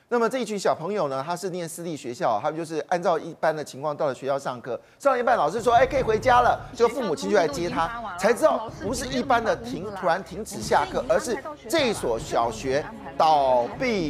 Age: 30-49